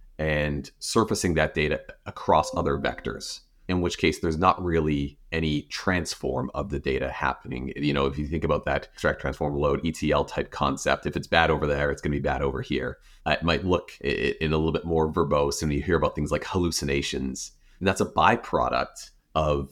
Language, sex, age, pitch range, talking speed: English, male, 30-49, 70-80 Hz, 195 wpm